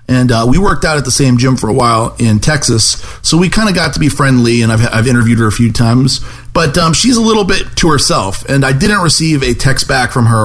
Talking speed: 270 wpm